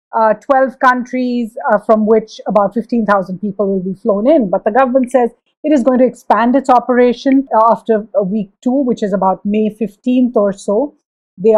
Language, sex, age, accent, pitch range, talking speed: English, female, 50-69, Indian, 210-250 Hz, 180 wpm